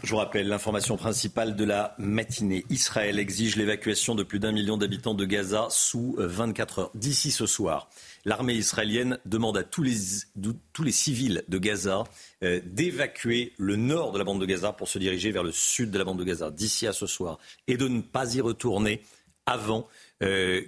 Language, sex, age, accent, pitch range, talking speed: French, male, 50-69, French, 95-115 Hz, 190 wpm